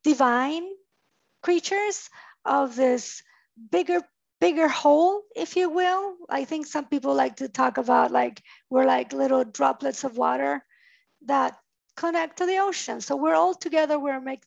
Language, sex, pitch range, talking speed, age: English, female, 265-350 Hz, 150 wpm, 50-69